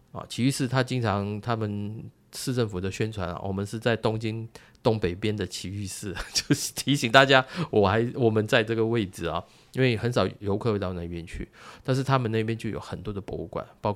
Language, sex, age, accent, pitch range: Chinese, male, 20-39, native, 95-115 Hz